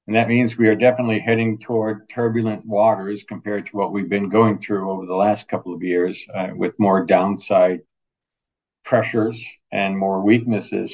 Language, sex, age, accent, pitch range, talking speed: English, male, 60-79, American, 100-115 Hz, 170 wpm